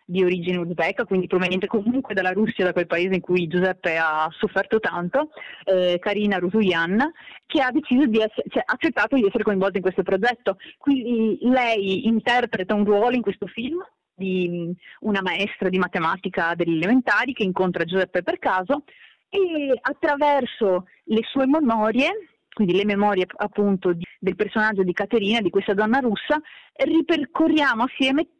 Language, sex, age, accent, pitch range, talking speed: Italian, female, 30-49, native, 190-265 Hz, 155 wpm